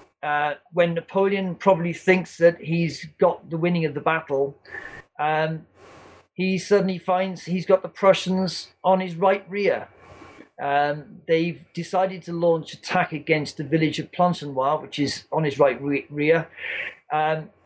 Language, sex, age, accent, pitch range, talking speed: English, male, 40-59, British, 150-180 Hz, 145 wpm